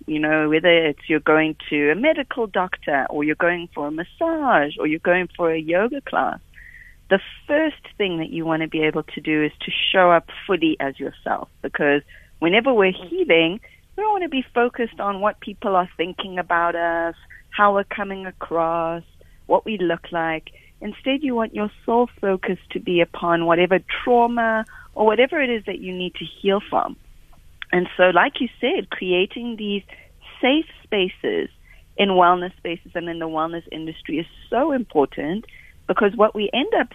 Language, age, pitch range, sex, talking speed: English, 40-59, 165-225 Hz, female, 180 wpm